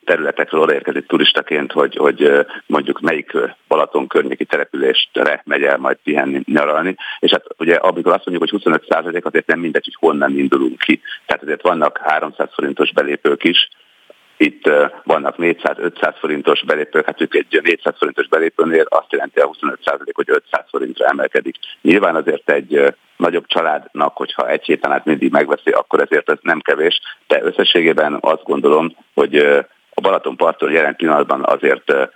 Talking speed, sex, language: 140 wpm, male, Hungarian